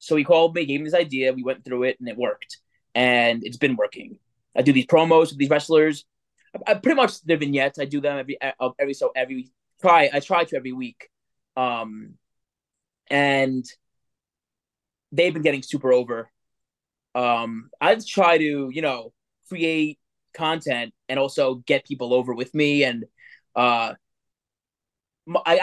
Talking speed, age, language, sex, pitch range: 160 wpm, 20-39, English, male, 130-170 Hz